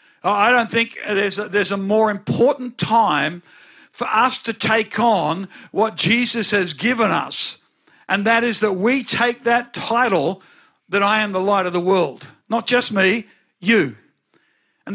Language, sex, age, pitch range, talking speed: English, male, 50-69, 215-255 Hz, 165 wpm